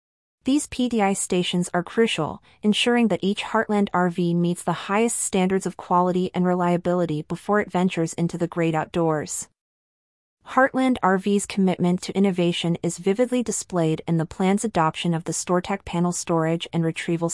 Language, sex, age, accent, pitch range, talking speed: English, female, 30-49, American, 170-205 Hz, 150 wpm